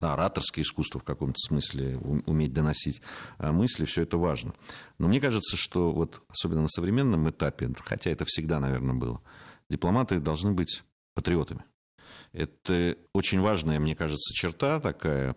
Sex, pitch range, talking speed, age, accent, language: male, 70-85 Hz, 140 wpm, 50-69, native, Russian